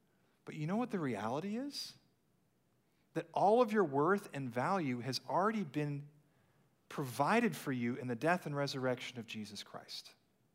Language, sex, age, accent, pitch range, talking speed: English, male, 40-59, American, 115-150 Hz, 160 wpm